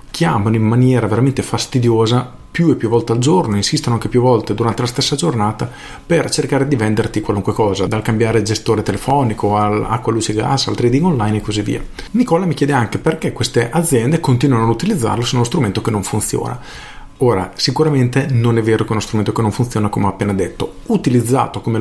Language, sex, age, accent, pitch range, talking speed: Italian, male, 40-59, native, 110-140 Hz, 205 wpm